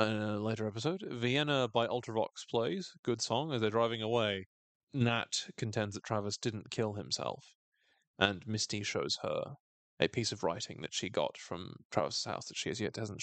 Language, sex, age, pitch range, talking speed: English, male, 30-49, 110-185 Hz, 180 wpm